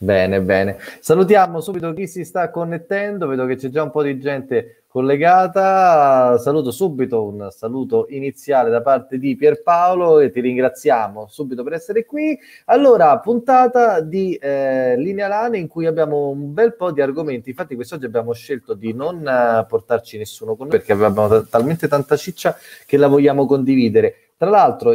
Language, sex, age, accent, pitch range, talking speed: Italian, male, 30-49, native, 120-195 Hz, 170 wpm